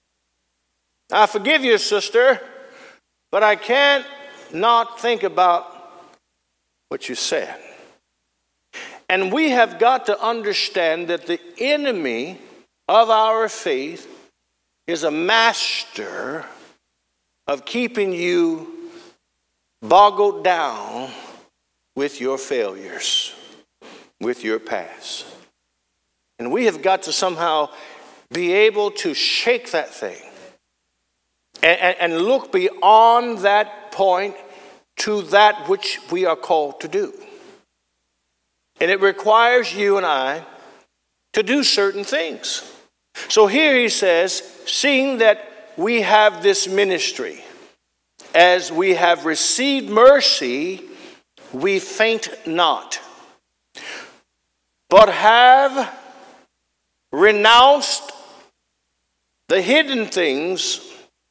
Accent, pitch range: American, 160-265 Hz